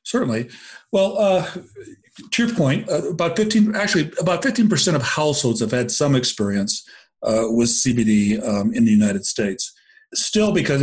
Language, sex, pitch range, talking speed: English, male, 110-155 Hz, 155 wpm